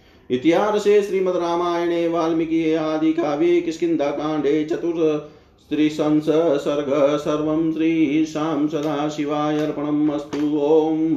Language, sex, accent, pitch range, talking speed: Hindi, male, native, 150-160 Hz, 75 wpm